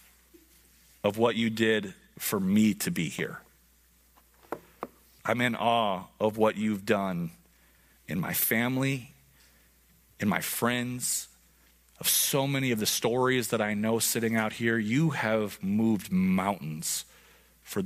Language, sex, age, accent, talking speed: English, male, 40-59, American, 130 wpm